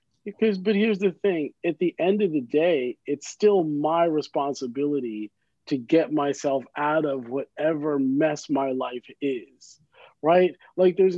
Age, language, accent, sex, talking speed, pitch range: 40-59, English, American, male, 150 wpm, 145-185 Hz